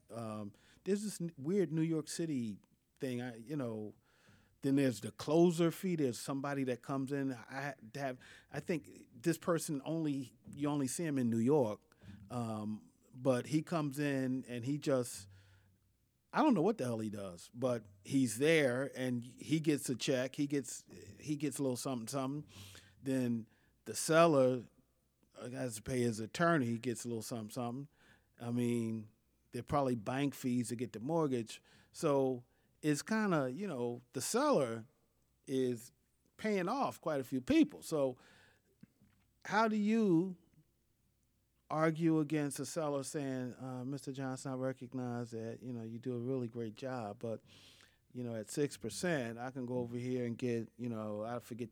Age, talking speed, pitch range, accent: 40-59, 170 wpm, 115-140 Hz, American